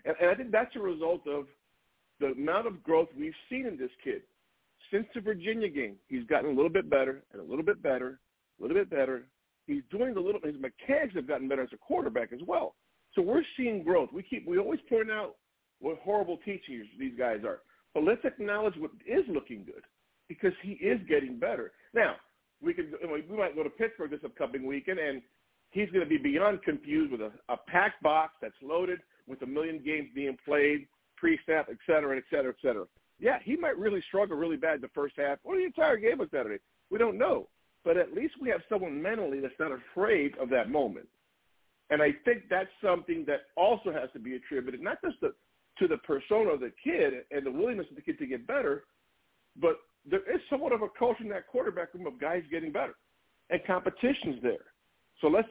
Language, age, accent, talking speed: English, 50-69, American, 215 wpm